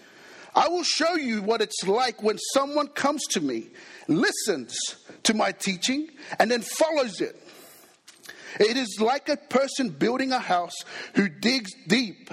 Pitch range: 205-275 Hz